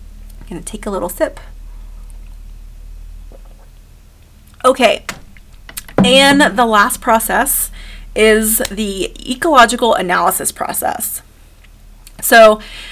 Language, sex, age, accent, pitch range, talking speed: English, female, 30-49, American, 190-240 Hz, 75 wpm